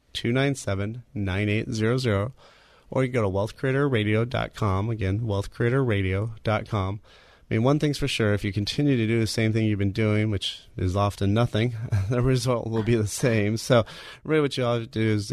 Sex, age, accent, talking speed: male, 30-49, American, 195 wpm